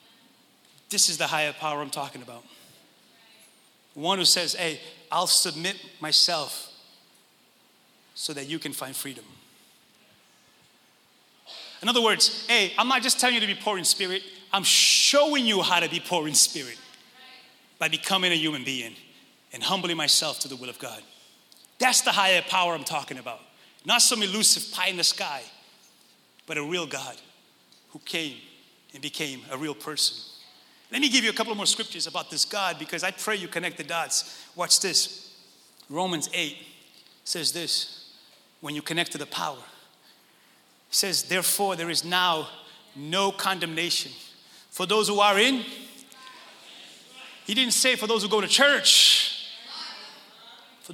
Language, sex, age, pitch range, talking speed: English, male, 30-49, 170-245 Hz, 160 wpm